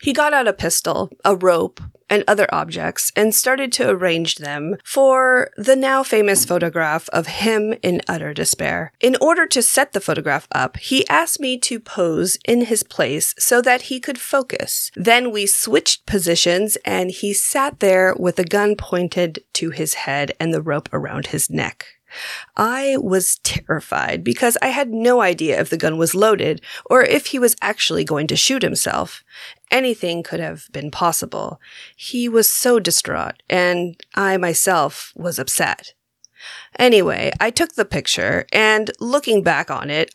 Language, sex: English, female